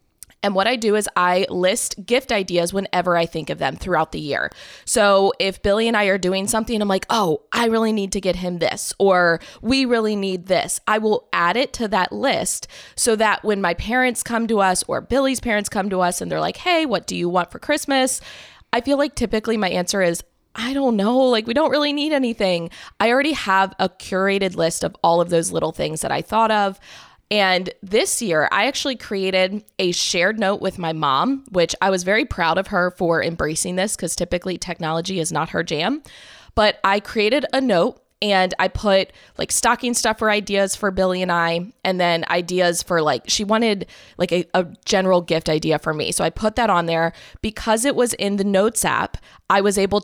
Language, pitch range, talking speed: English, 175-220 Hz, 215 wpm